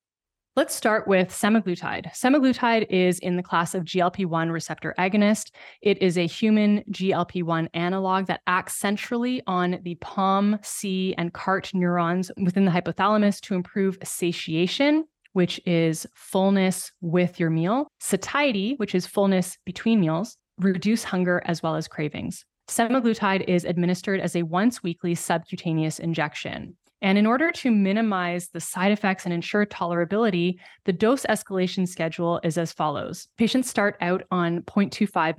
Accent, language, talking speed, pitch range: American, English, 140 wpm, 170-205 Hz